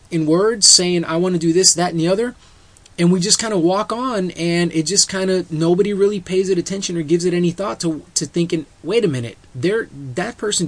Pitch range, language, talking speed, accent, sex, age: 140-180 Hz, English, 240 wpm, American, male, 30-49